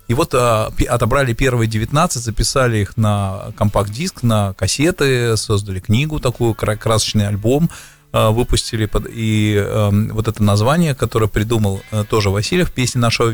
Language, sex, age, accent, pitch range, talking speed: Russian, male, 20-39, native, 105-120 Hz, 160 wpm